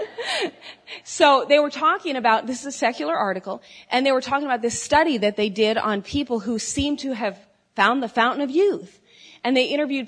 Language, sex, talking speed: English, female, 200 wpm